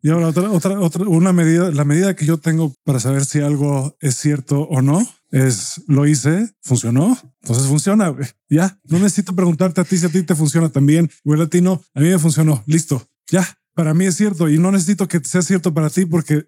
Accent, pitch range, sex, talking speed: Mexican, 135-170 Hz, male, 225 wpm